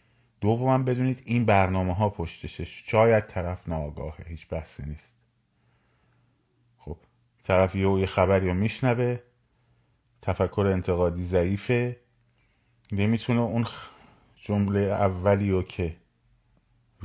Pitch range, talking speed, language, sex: 90-120 Hz, 100 wpm, Persian, male